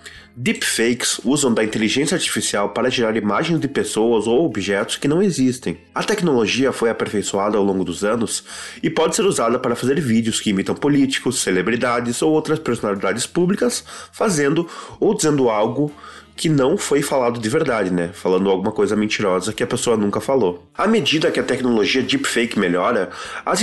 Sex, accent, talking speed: male, Brazilian, 170 wpm